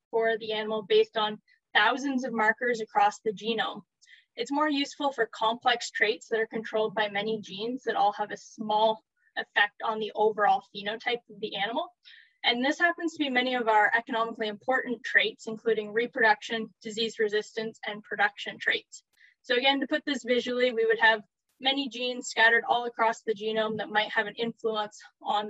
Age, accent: 10-29, American